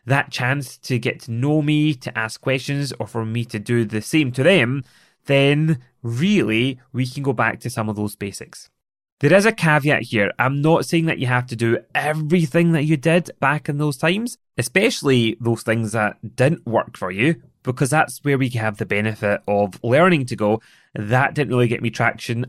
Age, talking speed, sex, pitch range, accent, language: 20-39, 205 wpm, male, 110-135 Hz, British, English